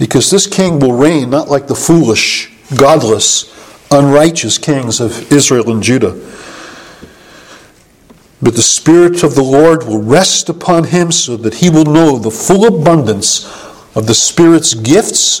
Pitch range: 145-210 Hz